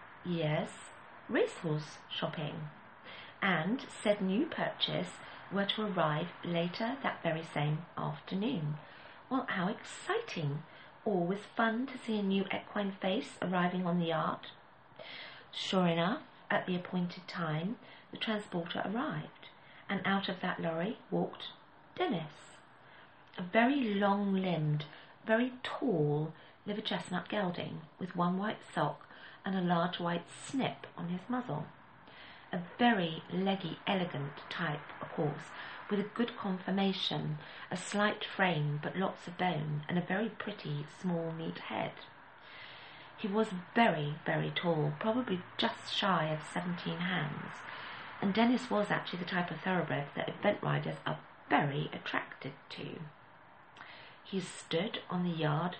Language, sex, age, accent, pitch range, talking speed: English, female, 40-59, British, 160-210 Hz, 130 wpm